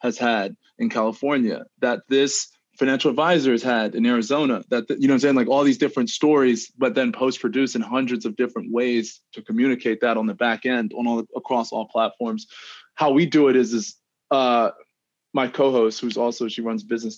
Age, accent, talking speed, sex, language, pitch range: 20-39, American, 205 wpm, male, English, 115-135 Hz